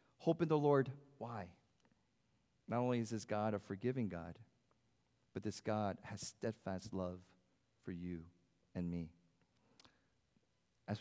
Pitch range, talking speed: 95-125 Hz, 130 wpm